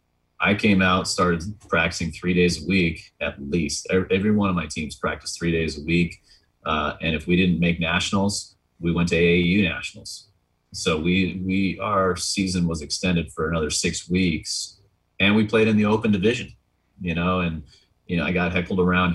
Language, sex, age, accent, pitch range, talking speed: English, male, 30-49, American, 85-95 Hz, 190 wpm